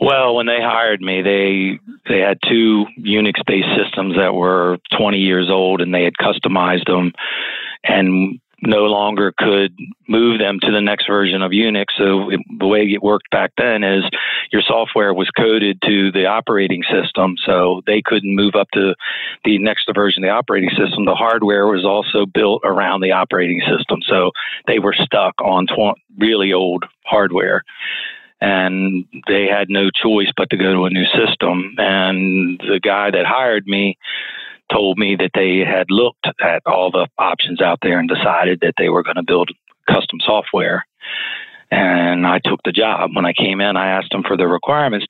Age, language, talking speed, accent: 40-59, English, 180 wpm, American